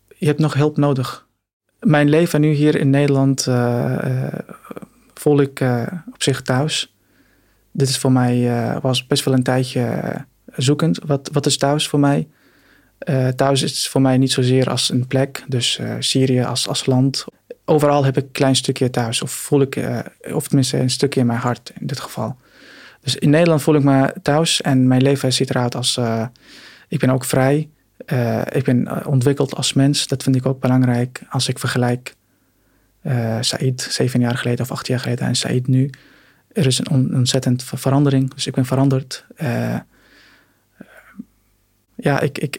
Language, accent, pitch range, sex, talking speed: Dutch, Dutch, 125-145 Hz, male, 185 wpm